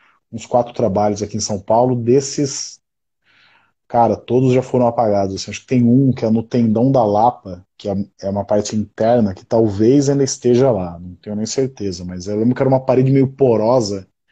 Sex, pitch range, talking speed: male, 105-125 Hz, 195 wpm